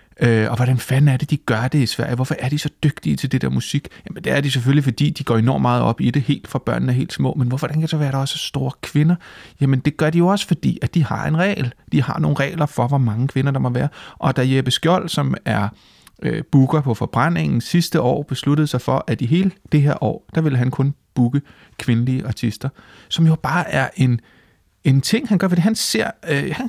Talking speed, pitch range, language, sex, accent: 260 wpm, 125-165 Hz, Danish, male, native